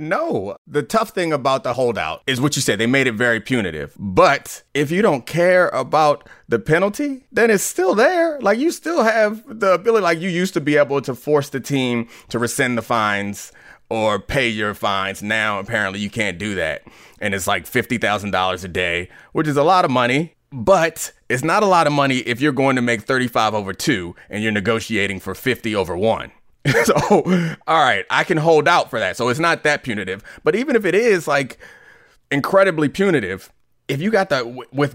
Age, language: 30-49, English